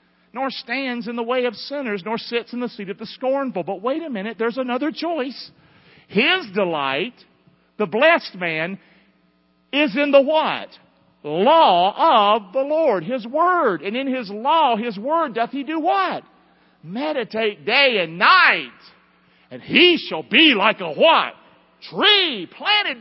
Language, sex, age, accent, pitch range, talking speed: English, male, 50-69, American, 165-270 Hz, 155 wpm